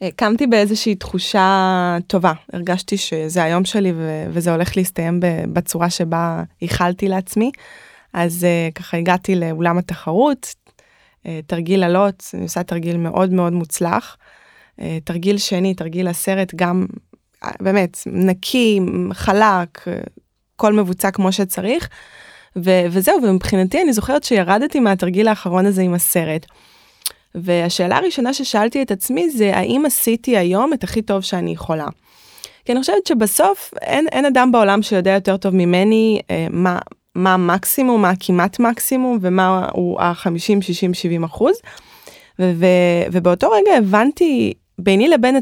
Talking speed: 130 wpm